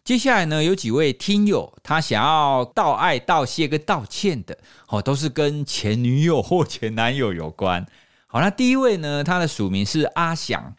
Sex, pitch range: male, 115-185 Hz